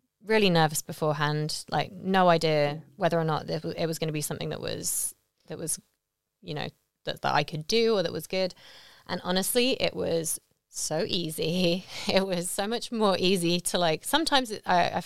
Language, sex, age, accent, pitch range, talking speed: English, female, 20-39, British, 160-195 Hz, 200 wpm